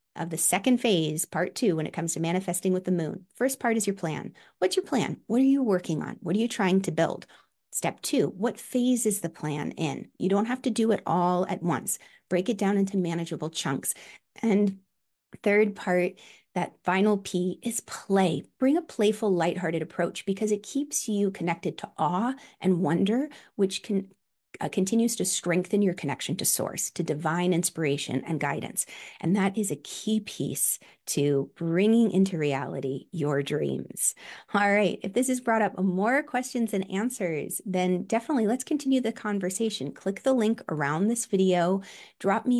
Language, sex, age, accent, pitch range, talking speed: English, female, 30-49, American, 170-225 Hz, 185 wpm